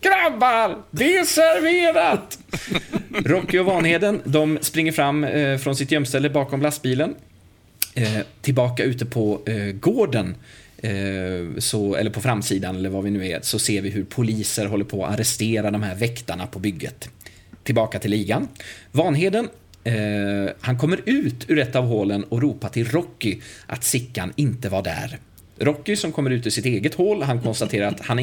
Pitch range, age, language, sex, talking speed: 105-145 Hz, 30-49, Swedish, male, 165 wpm